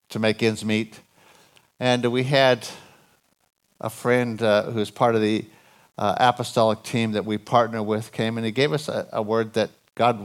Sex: male